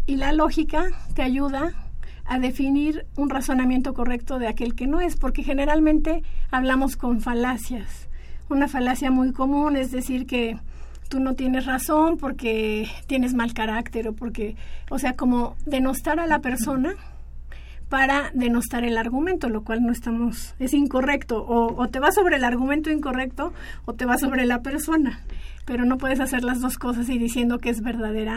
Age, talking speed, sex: 50-69, 170 wpm, female